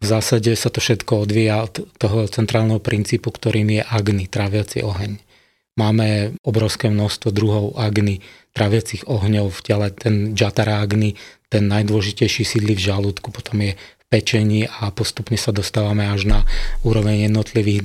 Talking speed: 145 wpm